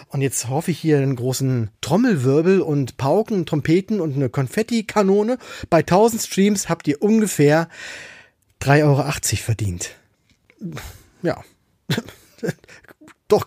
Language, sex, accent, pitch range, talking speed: German, male, German, 135-190 Hz, 110 wpm